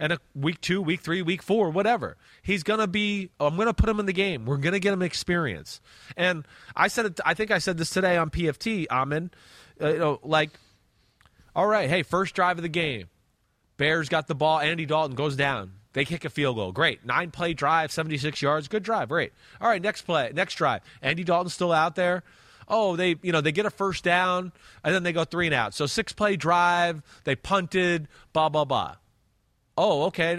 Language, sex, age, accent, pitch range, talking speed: English, male, 30-49, American, 145-200 Hz, 220 wpm